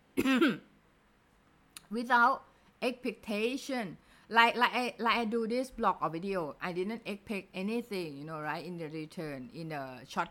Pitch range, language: 170-230 Hz, Thai